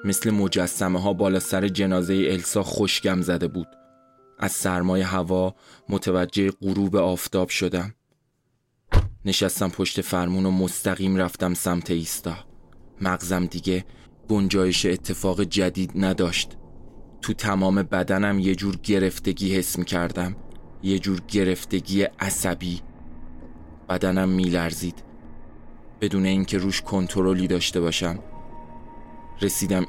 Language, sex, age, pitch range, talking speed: Persian, male, 20-39, 90-95 Hz, 110 wpm